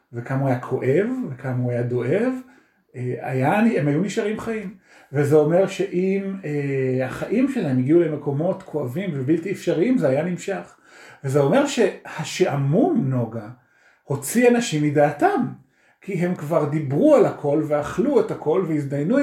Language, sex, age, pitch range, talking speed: Hebrew, male, 40-59, 130-185 Hz, 135 wpm